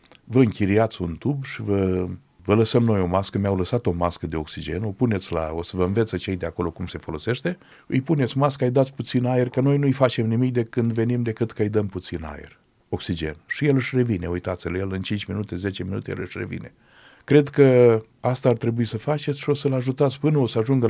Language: Romanian